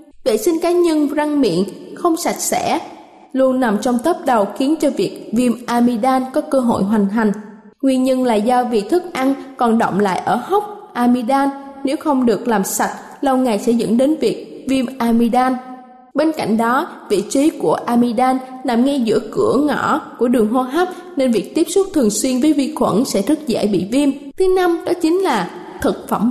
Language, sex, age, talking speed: Vietnamese, female, 20-39, 200 wpm